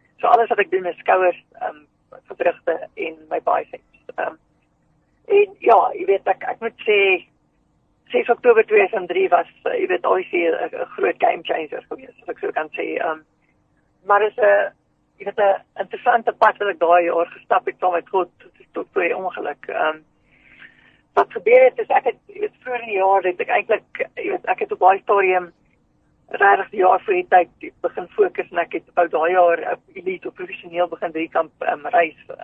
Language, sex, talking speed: English, female, 180 wpm